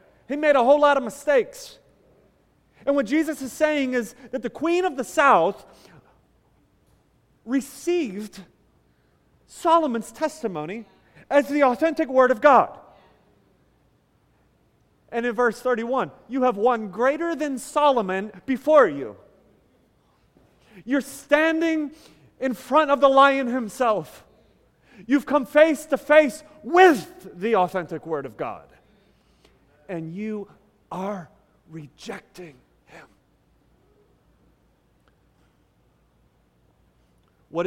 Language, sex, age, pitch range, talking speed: English, male, 30-49, 185-275 Hz, 105 wpm